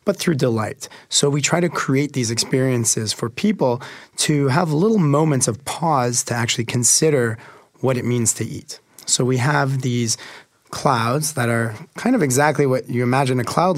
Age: 30-49